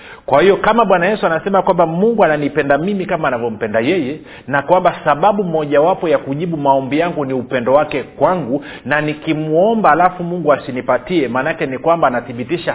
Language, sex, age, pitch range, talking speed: Swahili, male, 40-59, 140-180 Hz, 165 wpm